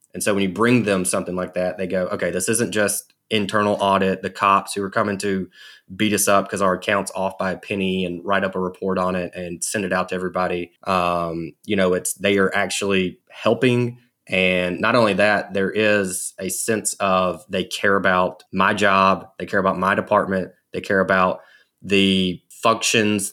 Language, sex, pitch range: English, male, 90-105 Hz